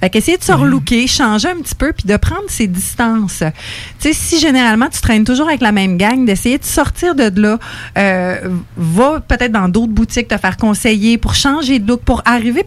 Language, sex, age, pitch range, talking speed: English, female, 30-49, 200-250 Hz, 215 wpm